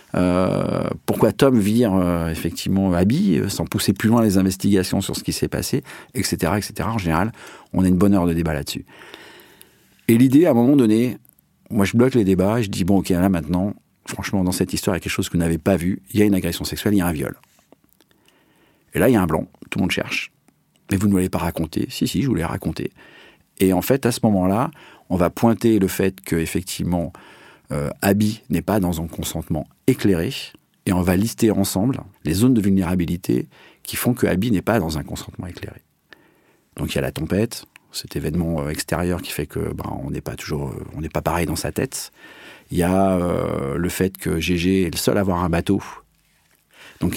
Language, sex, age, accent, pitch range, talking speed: French, male, 40-59, French, 85-105 Hz, 220 wpm